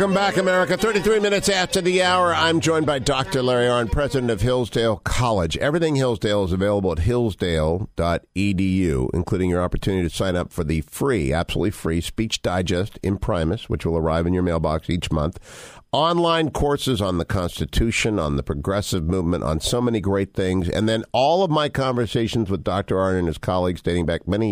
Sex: male